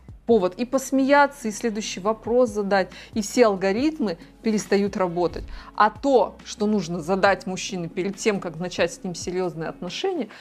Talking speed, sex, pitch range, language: 150 wpm, female, 185-245 Hz, Russian